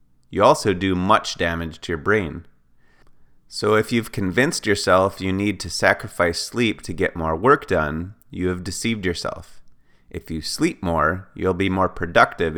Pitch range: 85-105 Hz